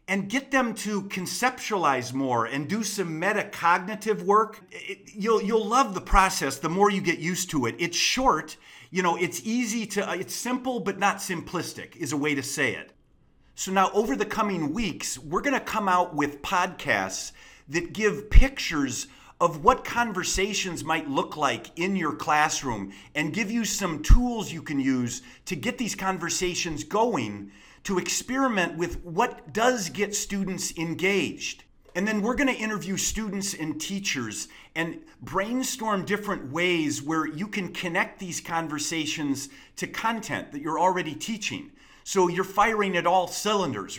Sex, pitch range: male, 160-210 Hz